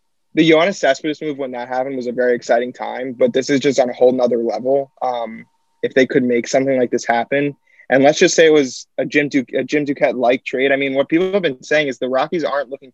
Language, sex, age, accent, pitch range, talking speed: English, male, 20-39, American, 120-140 Hz, 245 wpm